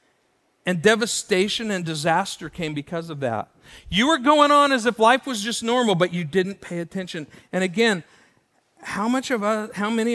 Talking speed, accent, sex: 185 wpm, American, male